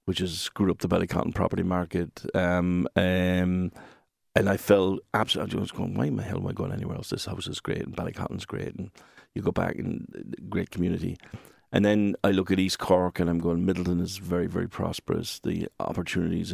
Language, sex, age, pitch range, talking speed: English, male, 50-69, 90-105 Hz, 205 wpm